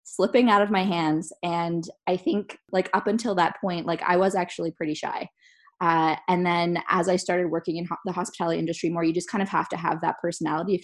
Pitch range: 165-185 Hz